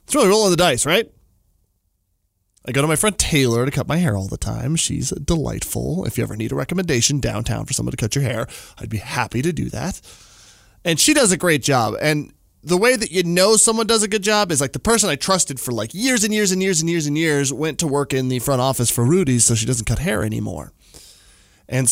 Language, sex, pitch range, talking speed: English, male, 105-165 Hz, 250 wpm